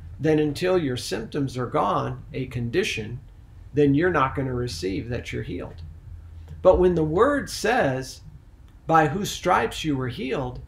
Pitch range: 110-175 Hz